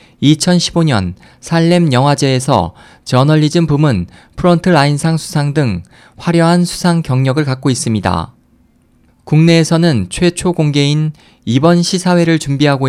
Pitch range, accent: 120-160 Hz, native